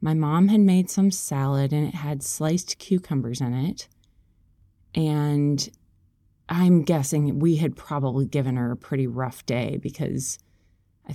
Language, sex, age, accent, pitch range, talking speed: English, female, 30-49, American, 110-175 Hz, 145 wpm